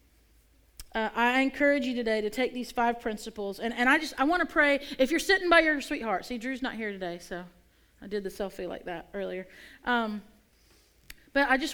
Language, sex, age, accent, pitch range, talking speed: English, female, 40-59, American, 205-280 Hz, 210 wpm